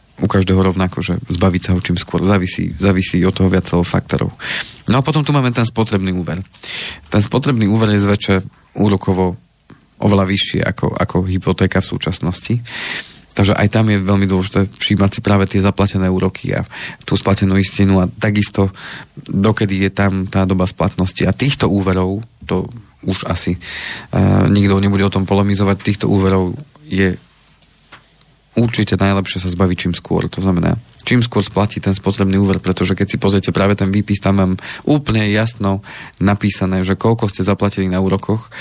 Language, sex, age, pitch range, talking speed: Slovak, male, 30-49, 95-105 Hz, 165 wpm